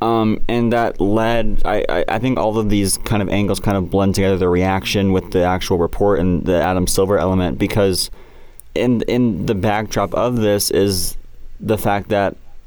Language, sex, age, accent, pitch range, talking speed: English, male, 20-39, American, 95-110 Hz, 190 wpm